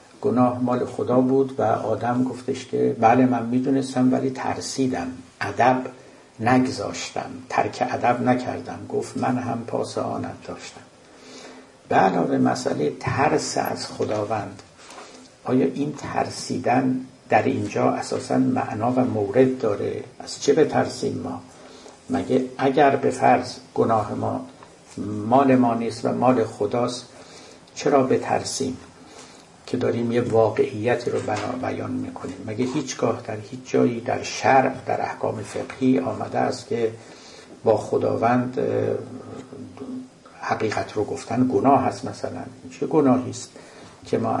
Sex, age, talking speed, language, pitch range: male, 60-79, 120 wpm, Persian, 115-135 Hz